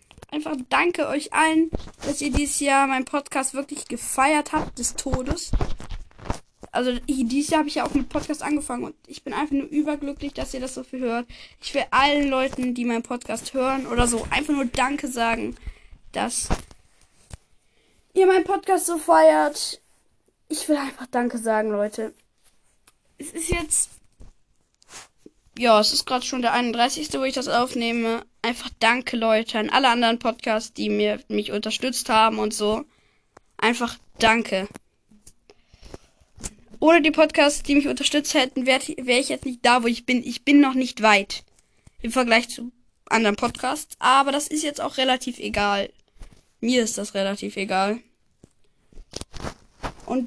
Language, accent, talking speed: German, German, 155 wpm